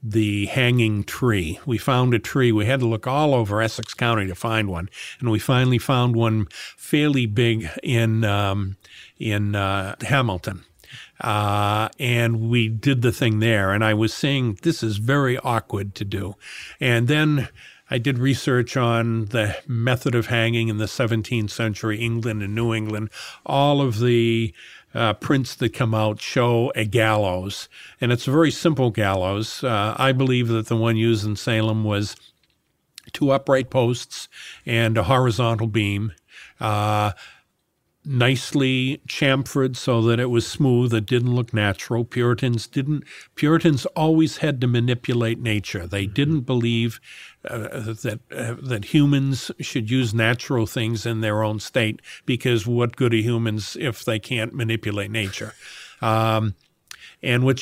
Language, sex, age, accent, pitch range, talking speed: English, male, 50-69, American, 110-130 Hz, 155 wpm